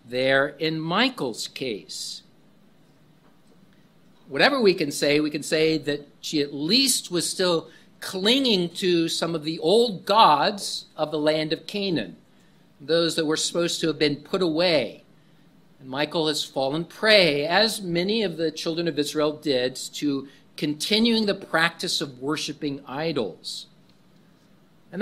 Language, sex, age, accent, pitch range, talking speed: English, male, 50-69, American, 150-190 Hz, 140 wpm